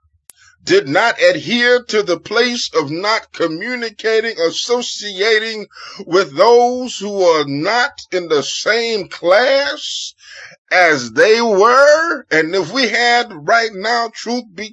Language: English